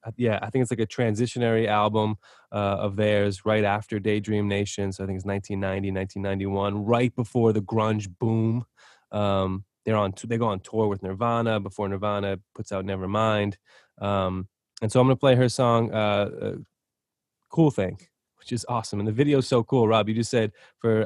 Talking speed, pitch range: 190 wpm, 100-115 Hz